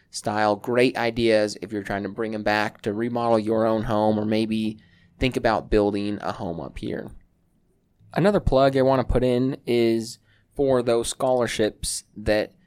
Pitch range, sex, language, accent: 105-130 Hz, male, English, American